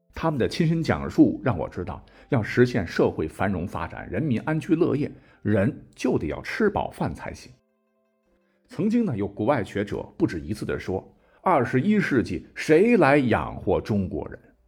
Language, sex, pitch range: Chinese, male, 90-140 Hz